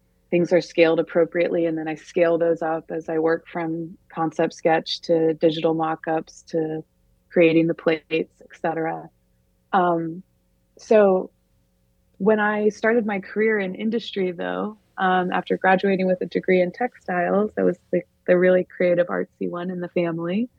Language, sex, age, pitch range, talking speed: English, female, 20-39, 170-195 Hz, 155 wpm